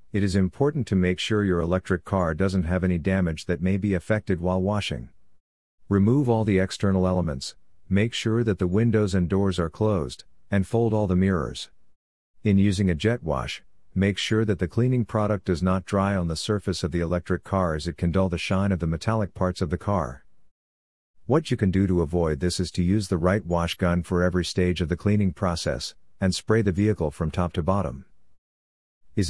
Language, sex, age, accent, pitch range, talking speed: English, male, 50-69, American, 85-100 Hz, 210 wpm